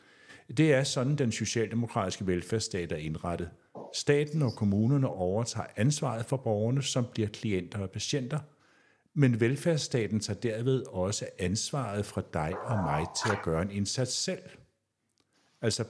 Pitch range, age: 100-135 Hz, 60-79